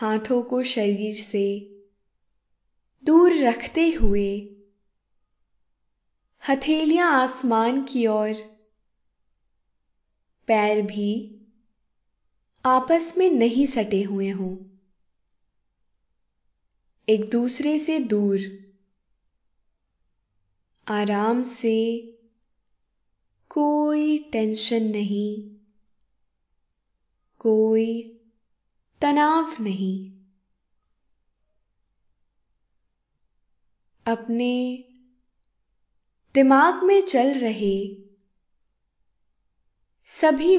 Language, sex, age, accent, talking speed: Hindi, female, 20-39, native, 55 wpm